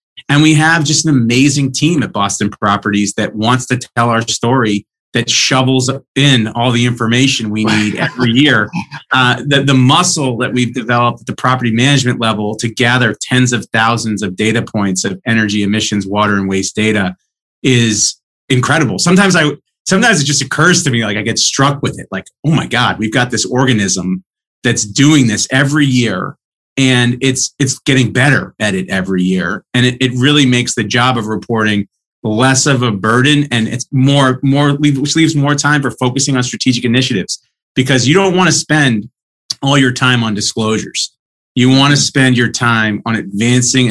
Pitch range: 105-135 Hz